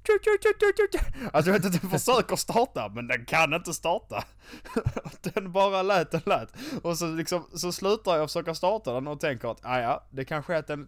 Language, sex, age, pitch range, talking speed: English, male, 20-39, 120-190 Hz, 180 wpm